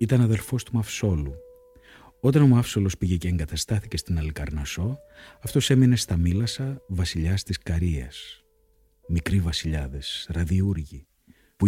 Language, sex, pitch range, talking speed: Greek, male, 80-110 Hz, 120 wpm